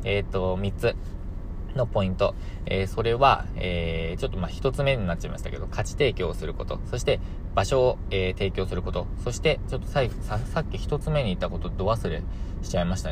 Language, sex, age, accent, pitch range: Japanese, male, 20-39, native, 90-110 Hz